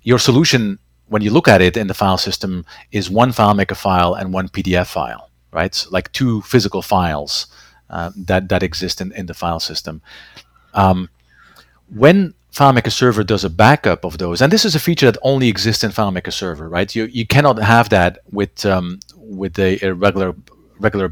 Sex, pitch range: male, 95-120 Hz